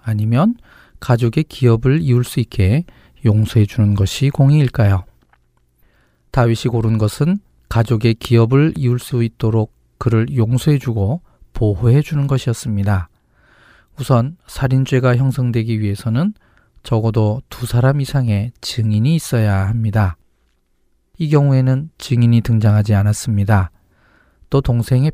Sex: male